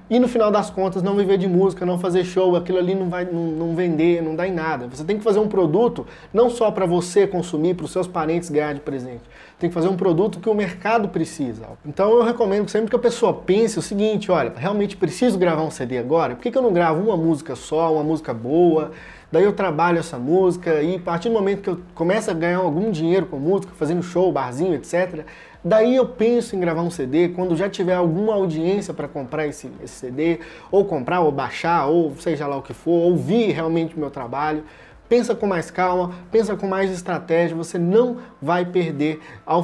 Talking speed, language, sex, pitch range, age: 225 wpm, Portuguese, male, 160-195 Hz, 20-39